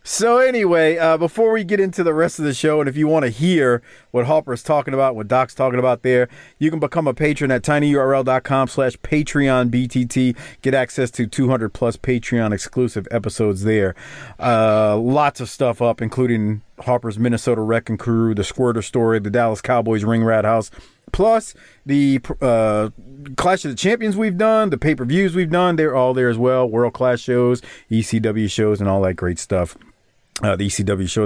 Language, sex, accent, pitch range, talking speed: English, male, American, 115-160 Hz, 180 wpm